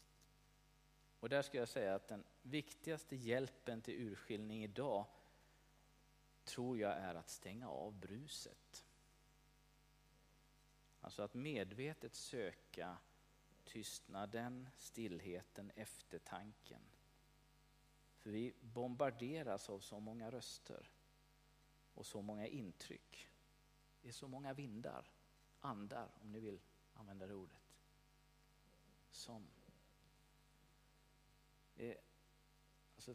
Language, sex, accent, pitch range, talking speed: English, male, Swedish, 105-140 Hz, 90 wpm